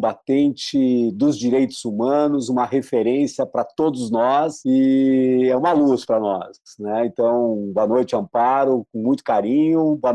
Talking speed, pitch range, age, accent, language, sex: 140 wpm, 125-180 Hz, 50-69, Brazilian, Portuguese, male